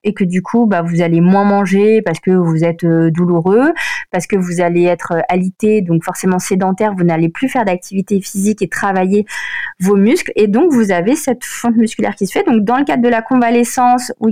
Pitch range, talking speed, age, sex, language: 180-235 Hz, 215 wpm, 20-39, female, French